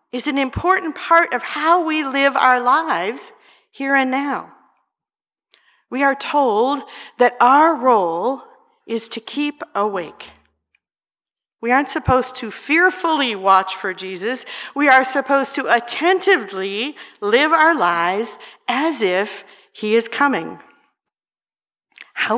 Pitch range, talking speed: 195-285 Hz, 120 wpm